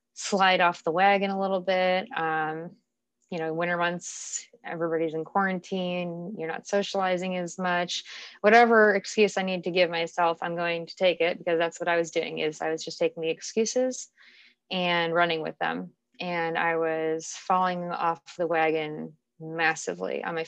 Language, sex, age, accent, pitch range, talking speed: English, female, 20-39, American, 160-180 Hz, 175 wpm